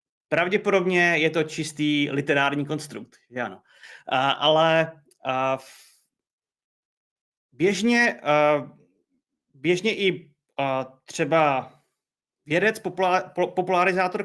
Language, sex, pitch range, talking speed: Czech, male, 150-185 Hz, 60 wpm